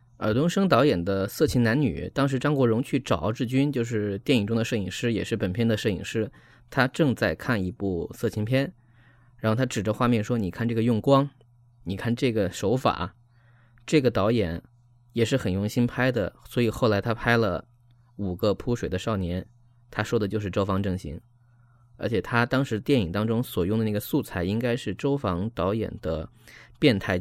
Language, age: Chinese, 20-39